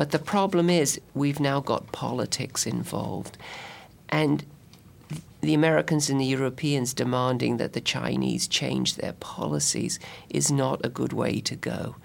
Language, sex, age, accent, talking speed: English, male, 50-69, British, 145 wpm